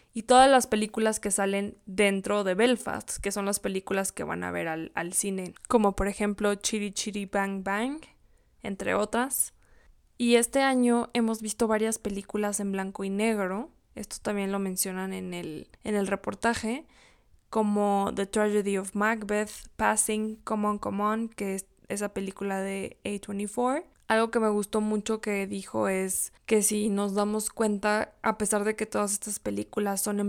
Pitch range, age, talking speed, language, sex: 195-220 Hz, 20-39, 170 wpm, Spanish, female